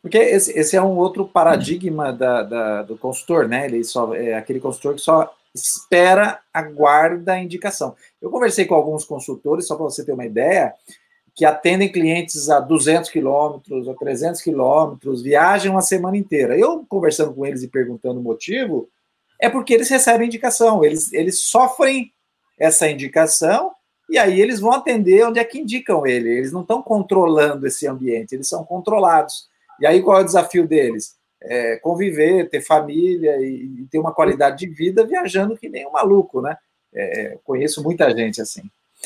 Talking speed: 170 wpm